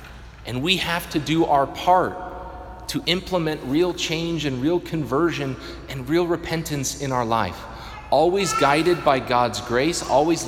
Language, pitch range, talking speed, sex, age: English, 130-170 Hz, 150 wpm, male, 30-49